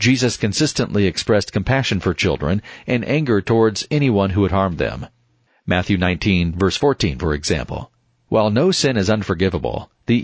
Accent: American